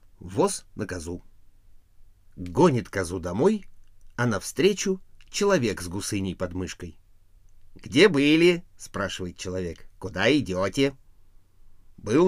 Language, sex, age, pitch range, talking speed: Russian, male, 50-69, 95-140 Hz, 105 wpm